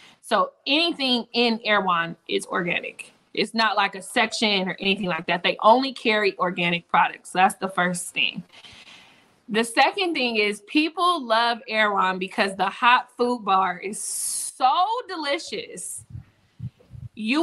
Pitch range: 185-240 Hz